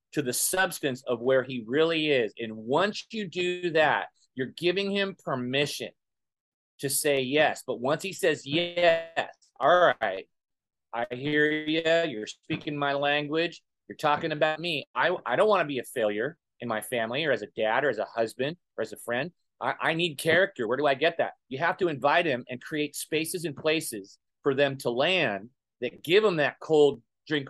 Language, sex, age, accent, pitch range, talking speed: English, male, 30-49, American, 135-175 Hz, 195 wpm